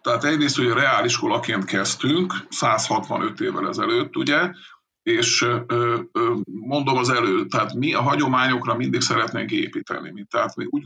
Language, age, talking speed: Hungarian, 50-69, 140 wpm